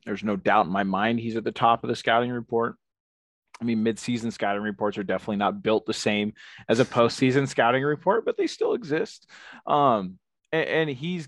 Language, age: English, 30-49